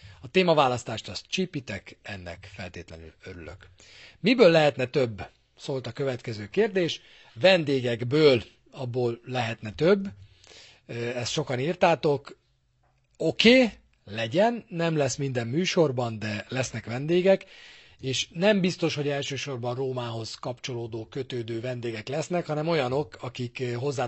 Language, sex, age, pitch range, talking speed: Hungarian, male, 40-59, 110-150 Hz, 110 wpm